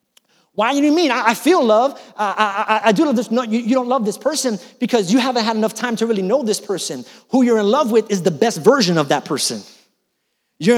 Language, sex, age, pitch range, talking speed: English, male, 30-49, 205-260 Hz, 245 wpm